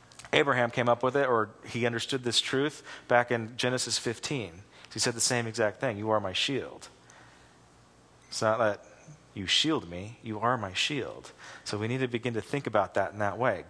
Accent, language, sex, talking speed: American, English, male, 200 wpm